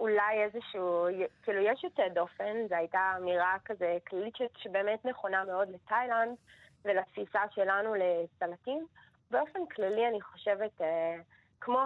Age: 20-39